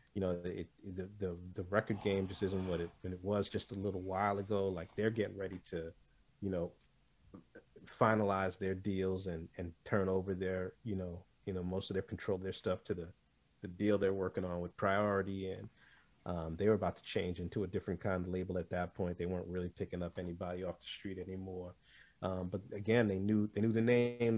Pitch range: 90-105 Hz